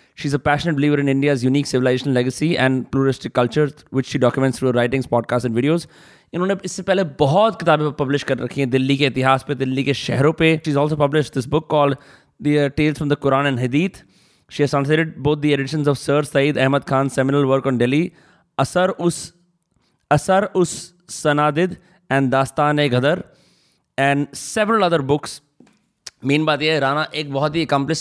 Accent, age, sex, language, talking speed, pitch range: native, 20-39, male, Hindi, 180 wpm, 135-165 Hz